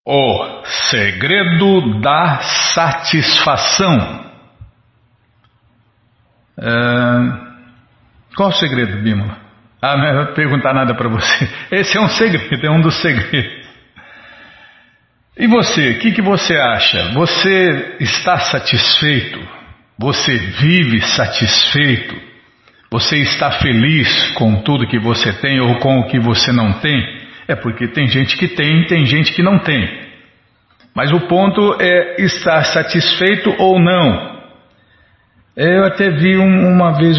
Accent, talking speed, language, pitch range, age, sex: Brazilian, 125 wpm, Portuguese, 120-175 Hz, 60-79, male